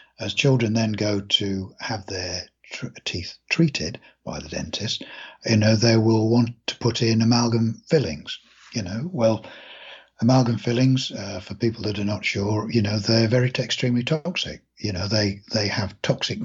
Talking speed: 170 wpm